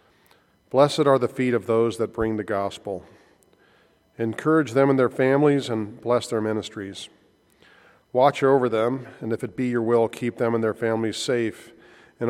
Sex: male